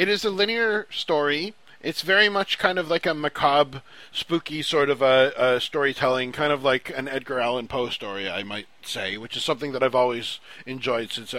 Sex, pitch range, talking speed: male, 120-150 Hz, 200 wpm